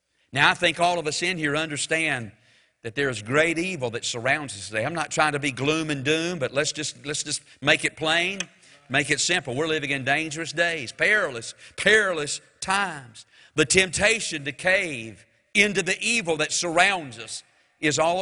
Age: 50-69